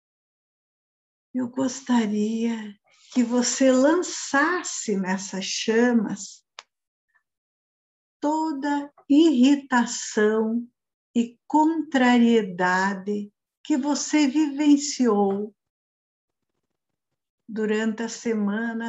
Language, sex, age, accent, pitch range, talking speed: Portuguese, female, 60-79, Brazilian, 210-270 Hz, 55 wpm